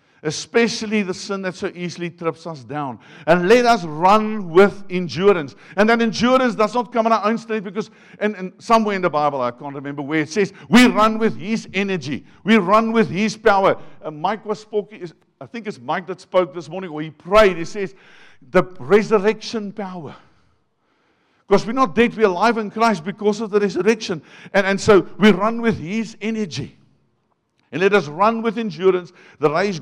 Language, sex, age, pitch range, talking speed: English, male, 60-79, 155-210 Hz, 190 wpm